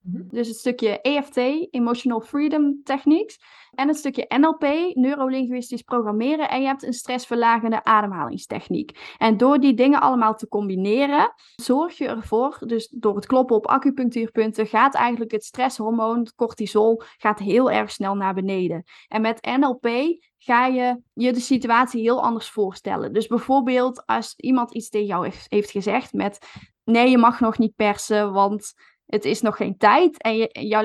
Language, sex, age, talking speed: Dutch, female, 10-29, 160 wpm